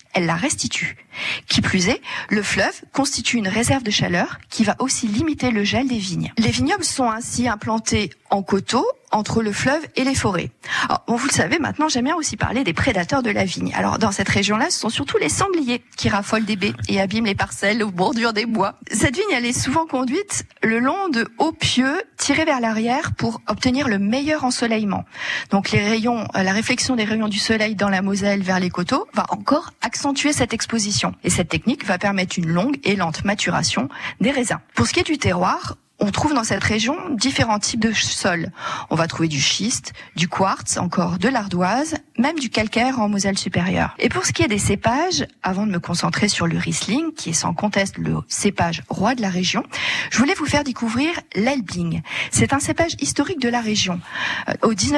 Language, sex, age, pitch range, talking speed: French, female, 40-59, 195-270 Hz, 205 wpm